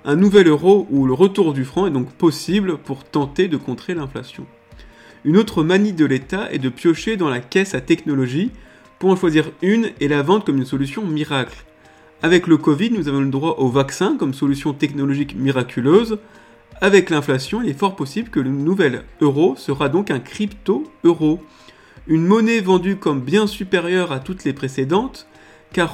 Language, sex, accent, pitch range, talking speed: French, male, French, 135-190 Hz, 180 wpm